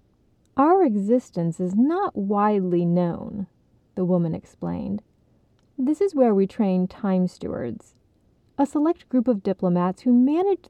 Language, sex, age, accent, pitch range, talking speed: English, female, 30-49, American, 180-245 Hz, 130 wpm